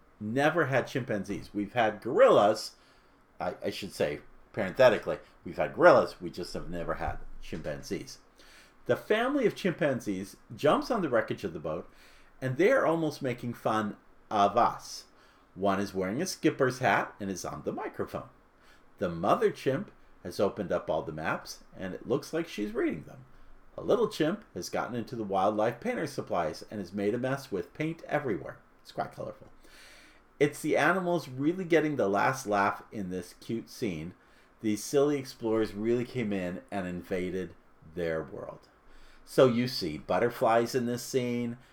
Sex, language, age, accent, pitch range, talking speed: male, English, 50-69, American, 95-130 Hz, 165 wpm